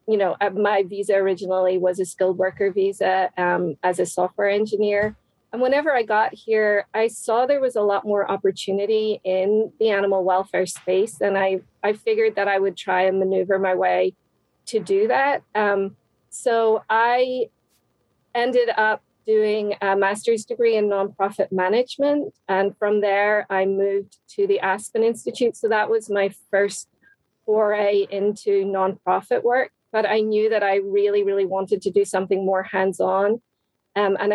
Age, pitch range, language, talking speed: 40-59, 195-220 Hz, English, 160 wpm